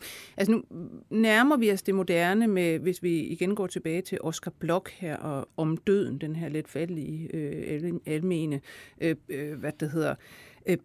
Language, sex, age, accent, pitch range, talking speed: Danish, female, 60-79, native, 170-225 Hz, 170 wpm